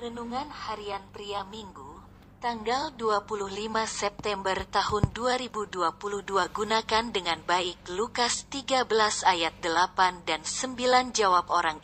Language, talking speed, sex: Indonesian, 100 wpm, female